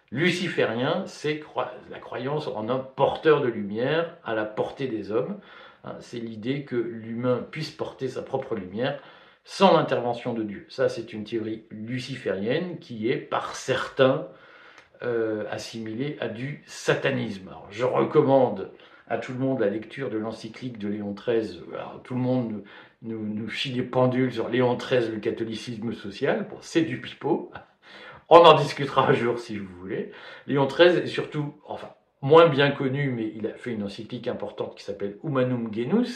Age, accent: 50-69, French